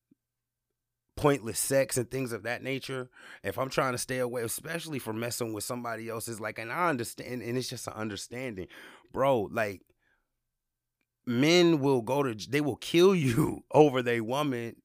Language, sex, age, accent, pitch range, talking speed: English, male, 30-49, American, 115-150 Hz, 165 wpm